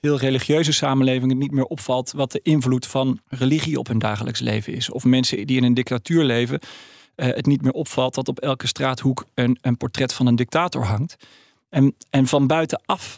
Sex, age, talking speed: male, 40-59, 200 wpm